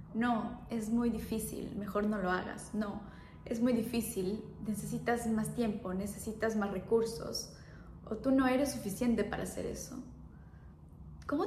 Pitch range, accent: 190-230 Hz, Mexican